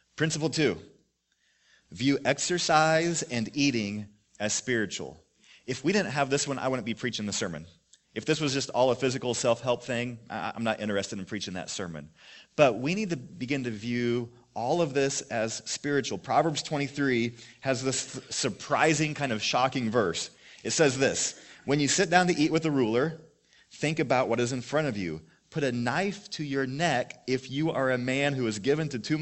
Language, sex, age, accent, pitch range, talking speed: English, male, 30-49, American, 115-150 Hz, 190 wpm